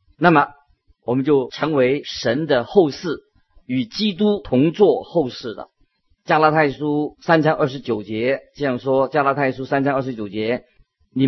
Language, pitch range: Chinese, 125-160 Hz